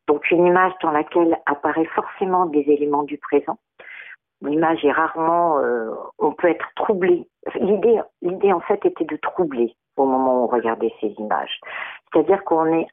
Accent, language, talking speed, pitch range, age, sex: French, French, 165 wpm, 155-200 Hz, 50-69, female